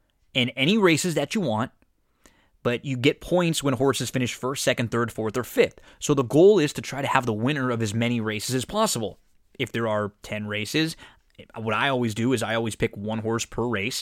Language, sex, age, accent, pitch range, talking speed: English, male, 20-39, American, 110-130 Hz, 225 wpm